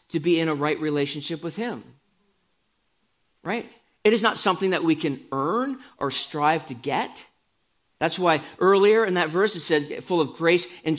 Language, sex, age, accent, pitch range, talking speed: English, male, 40-59, American, 150-195 Hz, 180 wpm